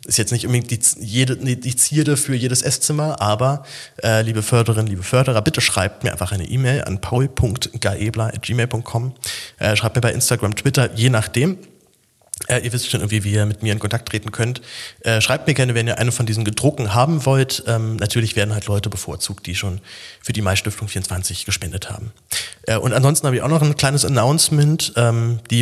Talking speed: 190 wpm